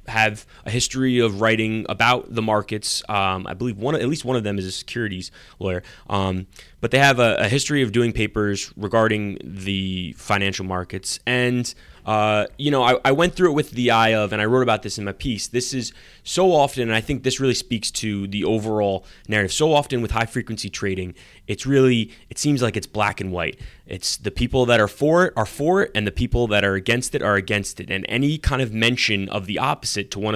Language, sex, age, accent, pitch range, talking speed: English, male, 20-39, American, 100-130 Hz, 230 wpm